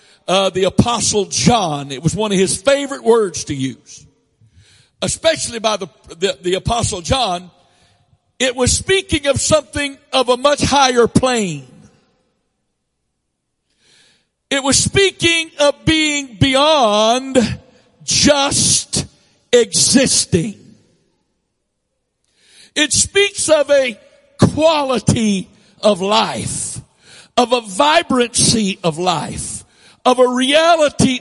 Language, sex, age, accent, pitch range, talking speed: English, male, 60-79, American, 180-275 Hz, 100 wpm